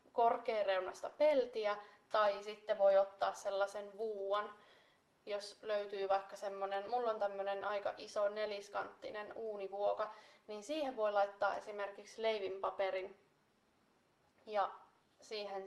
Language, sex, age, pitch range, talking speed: Finnish, female, 20-39, 200-230 Hz, 105 wpm